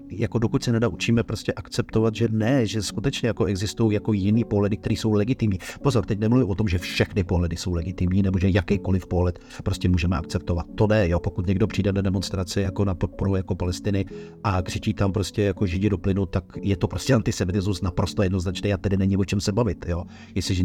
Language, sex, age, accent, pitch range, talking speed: Czech, male, 50-69, native, 95-110 Hz, 210 wpm